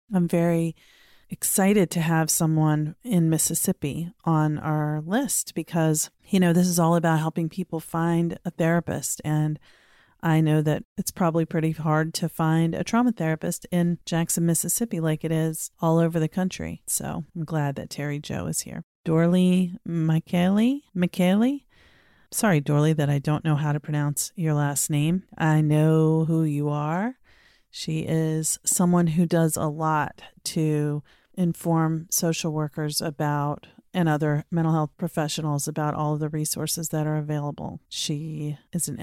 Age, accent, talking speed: 30-49, American, 155 wpm